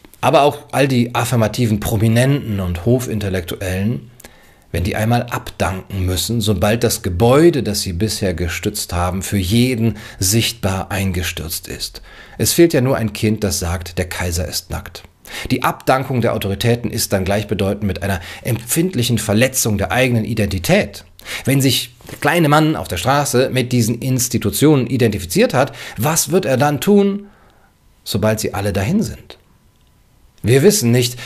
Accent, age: German, 40-59